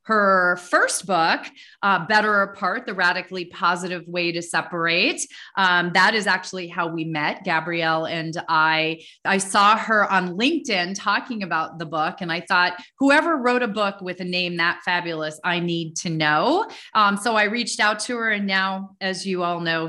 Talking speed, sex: 180 wpm, female